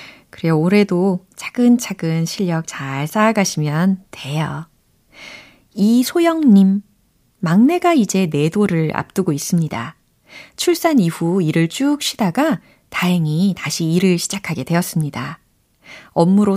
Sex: female